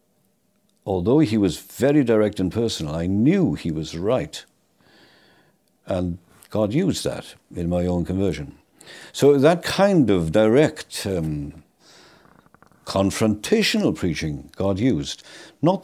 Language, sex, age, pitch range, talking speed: English, male, 50-69, 95-135 Hz, 115 wpm